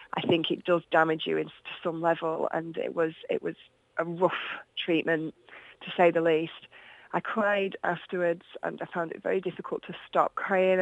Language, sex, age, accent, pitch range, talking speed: English, female, 20-39, British, 165-185 Hz, 185 wpm